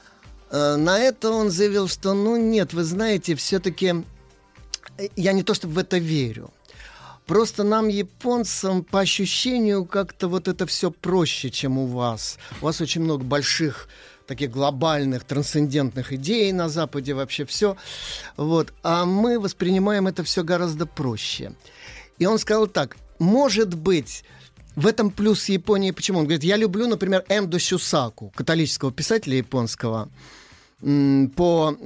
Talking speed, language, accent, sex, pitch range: 135 wpm, Russian, native, male, 140-190 Hz